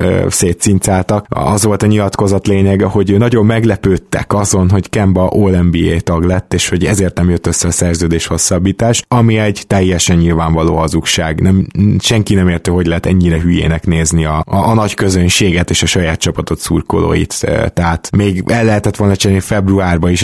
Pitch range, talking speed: 90-105 Hz, 165 wpm